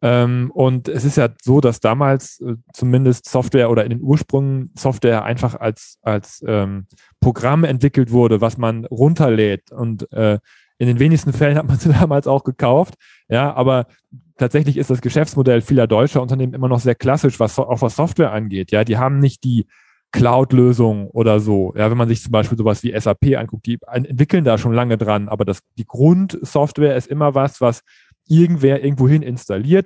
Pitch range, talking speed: 110-135 Hz, 175 wpm